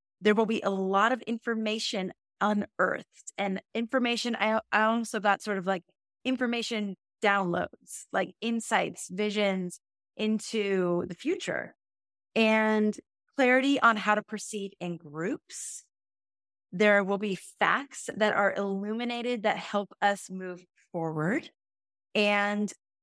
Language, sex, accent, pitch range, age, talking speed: English, female, American, 190-230 Hz, 30-49, 115 wpm